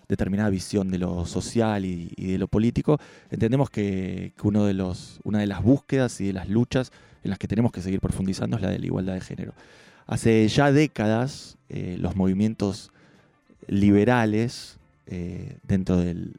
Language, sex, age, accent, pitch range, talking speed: Spanish, male, 20-39, Argentinian, 95-115 Hz, 170 wpm